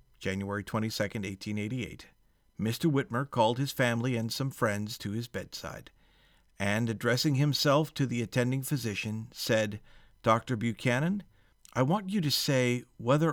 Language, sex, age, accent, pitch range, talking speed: English, male, 50-69, American, 105-135 Hz, 135 wpm